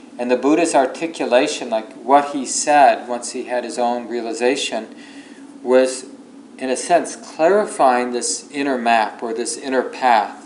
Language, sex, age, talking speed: English, male, 40-59, 150 wpm